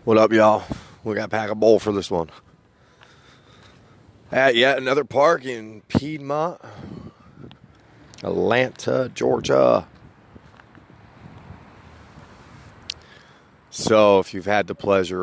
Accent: American